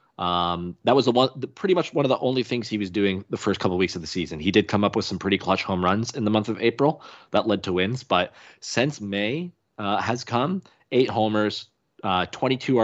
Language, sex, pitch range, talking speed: English, male, 95-120 Hz, 250 wpm